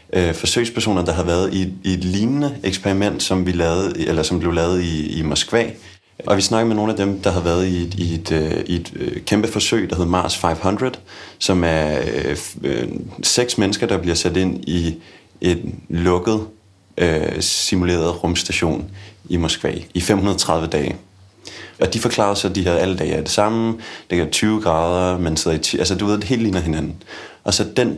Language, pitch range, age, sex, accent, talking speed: Danish, 85-100 Hz, 30-49, male, native, 190 wpm